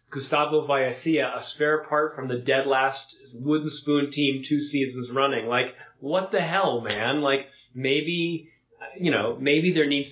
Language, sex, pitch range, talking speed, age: English, male, 120-145 Hz, 160 wpm, 30-49